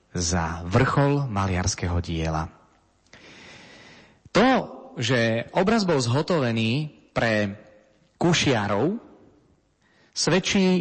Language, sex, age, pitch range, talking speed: Slovak, male, 30-49, 105-160 Hz, 65 wpm